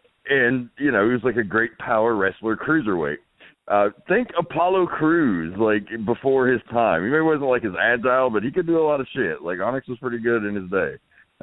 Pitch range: 105-135 Hz